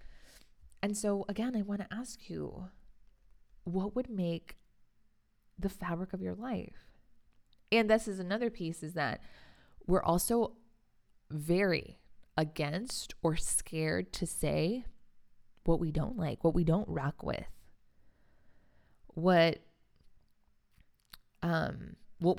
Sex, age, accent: female, 20-39, American